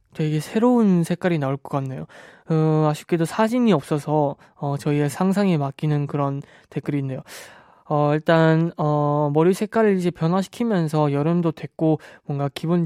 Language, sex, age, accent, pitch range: Korean, male, 20-39, native, 150-195 Hz